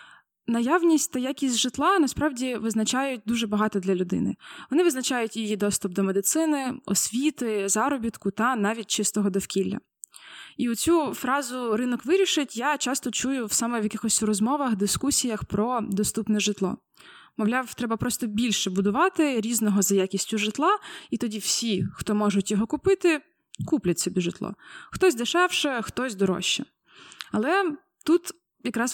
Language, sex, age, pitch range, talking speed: Ukrainian, female, 20-39, 210-280 Hz, 135 wpm